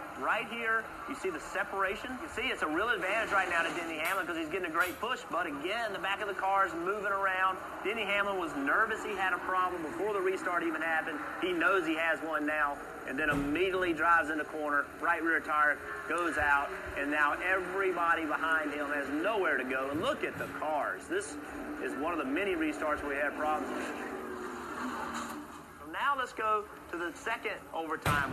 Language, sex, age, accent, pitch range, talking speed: English, male, 30-49, American, 155-230 Hz, 205 wpm